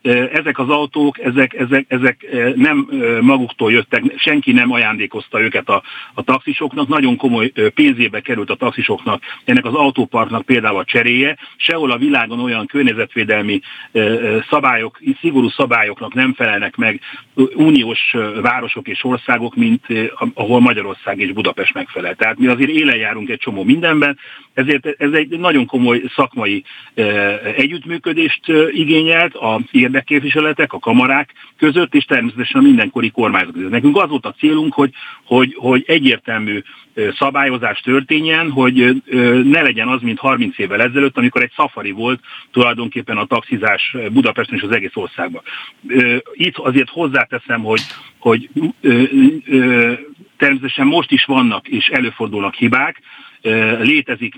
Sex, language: male, Hungarian